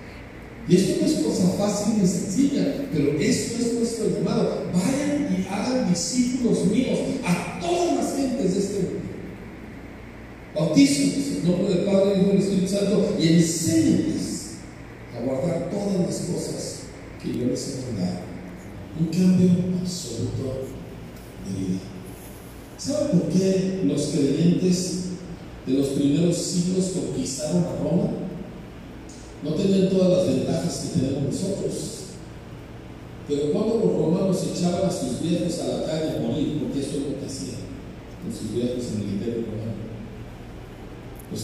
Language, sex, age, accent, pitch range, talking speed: Spanish, male, 50-69, Mexican, 120-190 Hz, 140 wpm